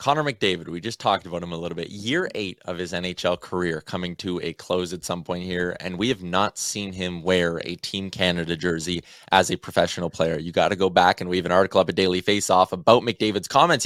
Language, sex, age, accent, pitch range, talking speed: English, male, 20-39, American, 95-130 Hz, 245 wpm